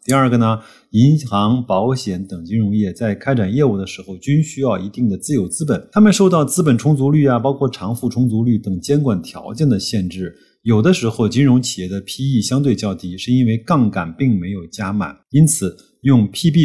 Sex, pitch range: male, 100-130 Hz